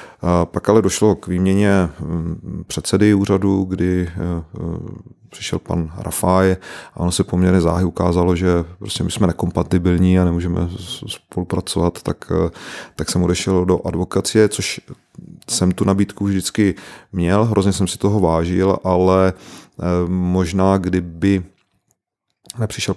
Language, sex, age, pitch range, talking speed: Czech, male, 30-49, 85-95 Hz, 120 wpm